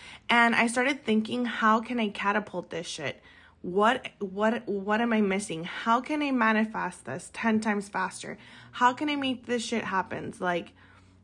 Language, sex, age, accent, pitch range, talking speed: English, female, 20-39, American, 190-230 Hz, 170 wpm